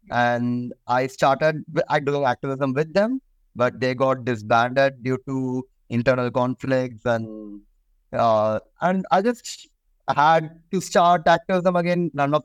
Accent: Indian